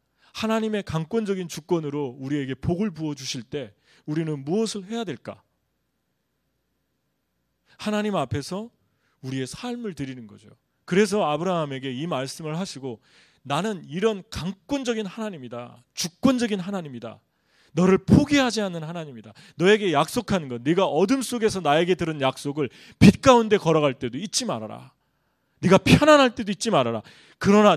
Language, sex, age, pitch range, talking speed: English, male, 30-49, 130-195 Hz, 115 wpm